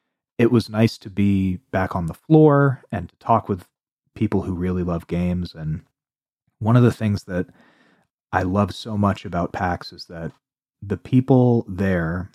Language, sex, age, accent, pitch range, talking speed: English, male, 30-49, American, 90-115 Hz, 170 wpm